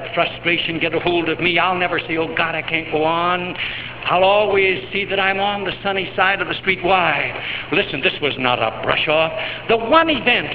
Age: 70-89